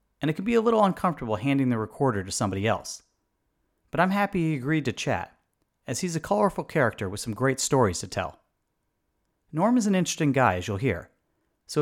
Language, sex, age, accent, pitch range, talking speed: English, male, 40-59, American, 105-150 Hz, 205 wpm